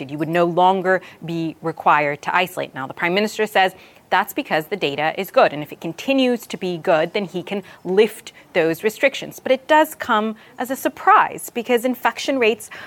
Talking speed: 195 wpm